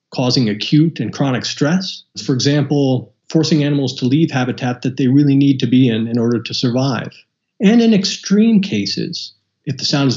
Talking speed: 185 wpm